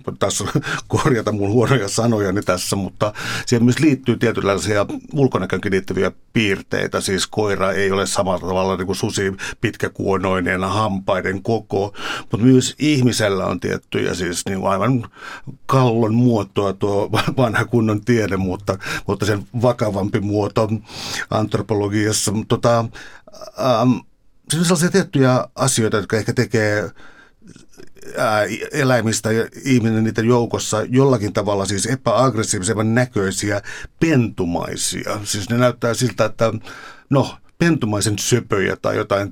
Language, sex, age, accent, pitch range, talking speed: Finnish, male, 60-79, native, 100-120 Hz, 120 wpm